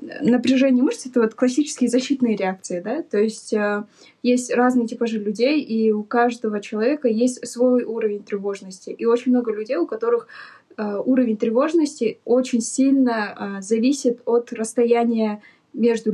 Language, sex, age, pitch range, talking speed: Russian, female, 10-29, 210-250 Hz, 145 wpm